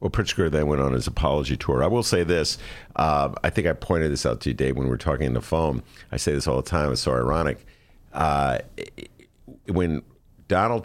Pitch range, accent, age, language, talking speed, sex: 65-105 Hz, American, 50-69, English, 225 wpm, male